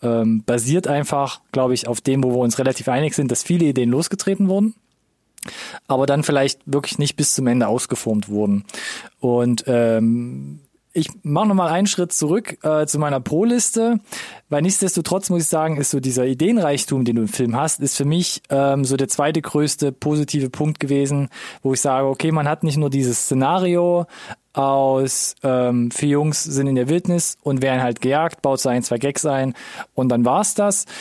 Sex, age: male, 20-39